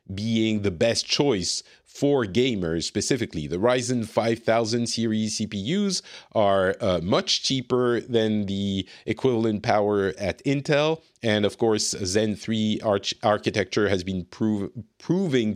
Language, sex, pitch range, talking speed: English, male, 105-135 Hz, 125 wpm